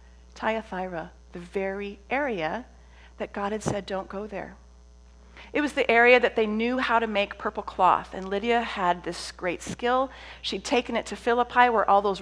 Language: English